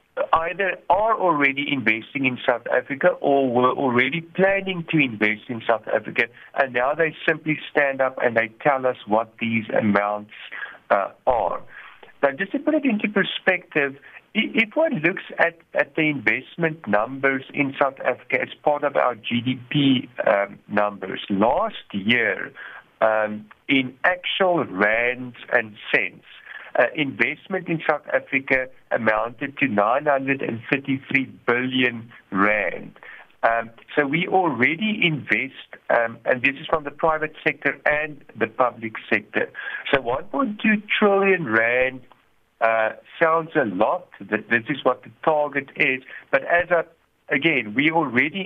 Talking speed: 140 wpm